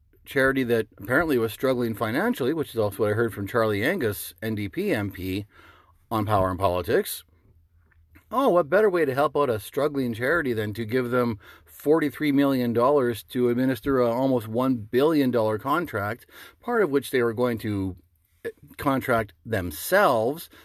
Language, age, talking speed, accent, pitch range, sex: English, 40-59, 155 wpm, American, 95-145 Hz, male